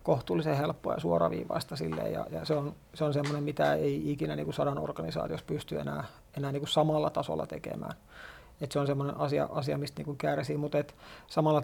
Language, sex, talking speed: Finnish, male, 185 wpm